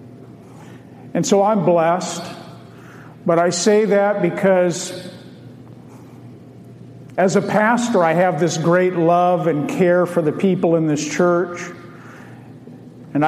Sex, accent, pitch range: male, American, 150-180 Hz